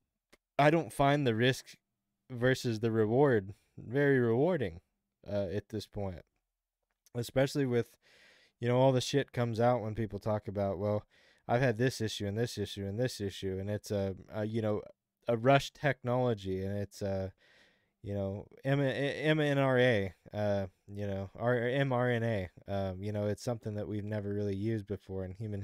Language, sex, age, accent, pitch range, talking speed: English, male, 20-39, American, 100-125 Hz, 155 wpm